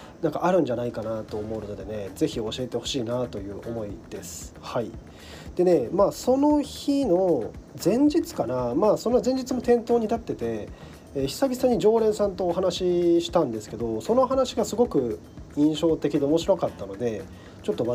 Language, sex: Japanese, male